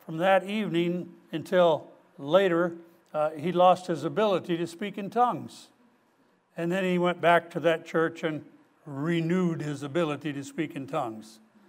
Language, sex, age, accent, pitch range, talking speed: English, male, 60-79, American, 150-185 Hz, 150 wpm